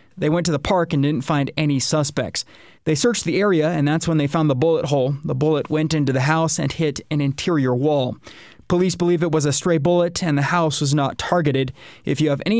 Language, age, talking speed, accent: English, 30-49, 240 wpm, American